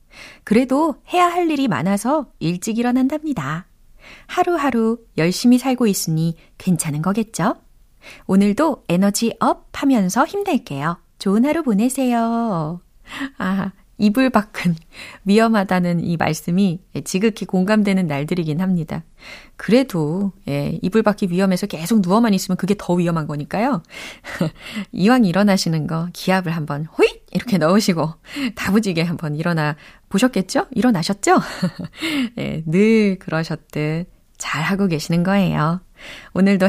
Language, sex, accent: Korean, female, native